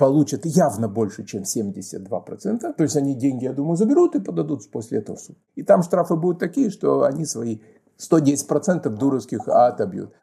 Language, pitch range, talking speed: Russian, 140-205 Hz, 170 wpm